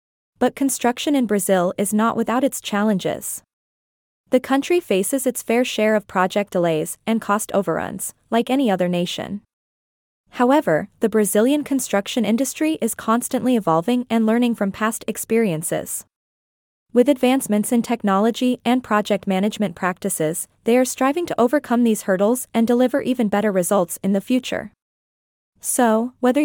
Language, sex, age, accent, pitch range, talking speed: English, female, 20-39, American, 200-255 Hz, 145 wpm